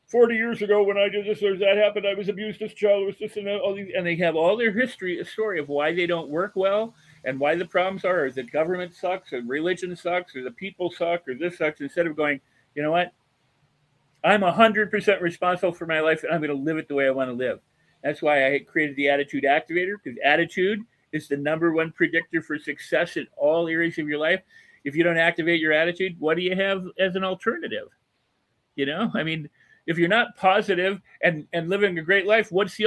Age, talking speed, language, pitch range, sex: 40-59, 230 wpm, English, 150-200 Hz, male